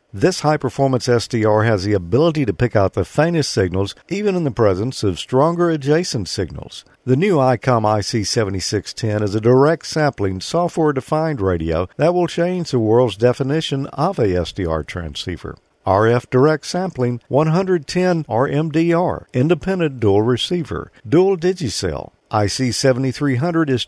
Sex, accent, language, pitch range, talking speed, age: male, American, English, 105-160 Hz, 130 wpm, 50-69